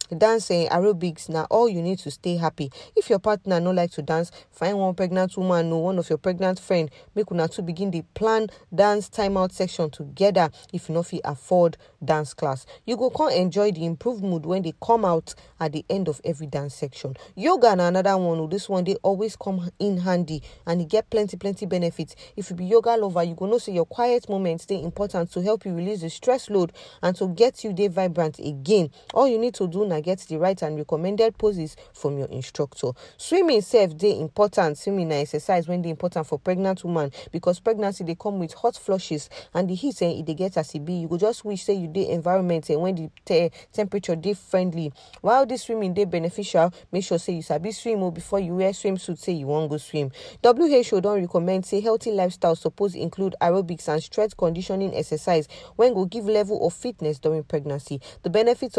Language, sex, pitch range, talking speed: English, female, 165-205 Hz, 215 wpm